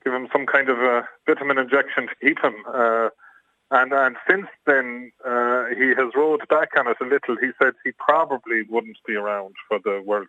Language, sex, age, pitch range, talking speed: English, male, 30-49, 115-125 Hz, 205 wpm